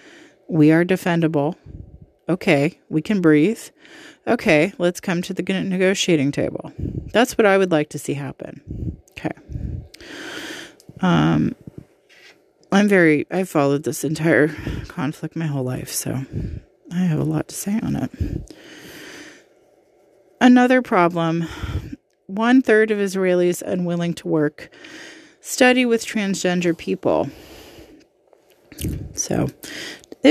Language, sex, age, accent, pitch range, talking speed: English, female, 30-49, American, 160-225 Hz, 115 wpm